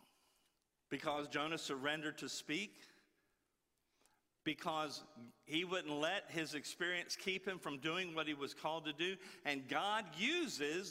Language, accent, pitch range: English, American, 125-160 Hz